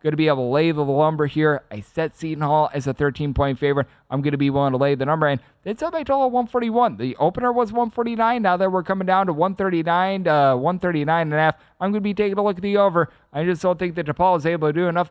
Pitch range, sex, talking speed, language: 140-190 Hz, male, 280 wpm, English